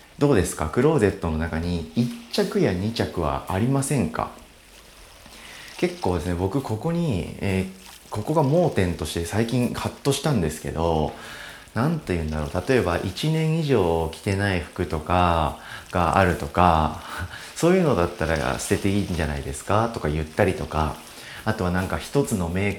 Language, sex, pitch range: Japanese, male, 80-120 Hz